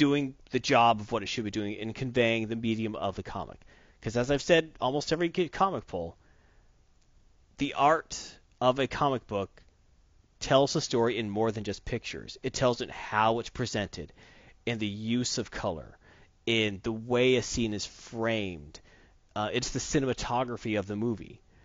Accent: American